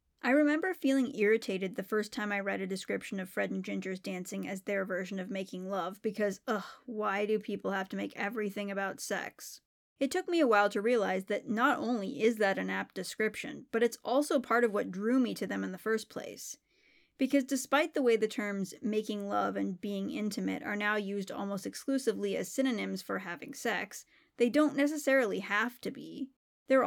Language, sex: English, female